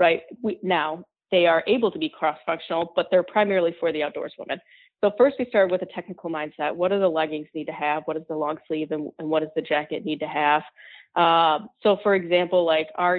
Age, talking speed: 20-39, 230 wpm